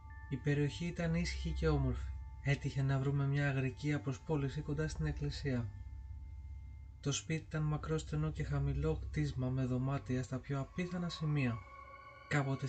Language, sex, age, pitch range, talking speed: Greek, male, 20-39, 100-145 Hz, 135 wpm